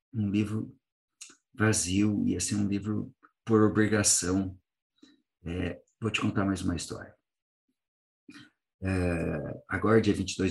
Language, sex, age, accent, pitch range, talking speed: Portuguese, male, 50-69, Brazilian, 95-115 Hz, 120 wpm